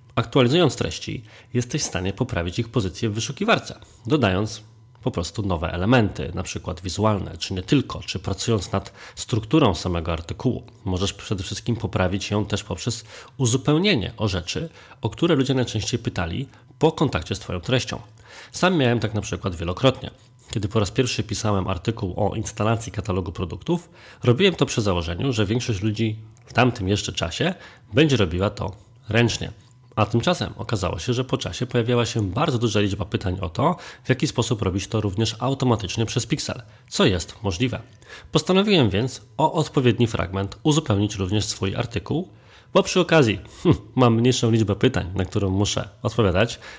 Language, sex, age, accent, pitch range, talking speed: Polish, male, 30-49, native, 100-125 Hz, 160 wpm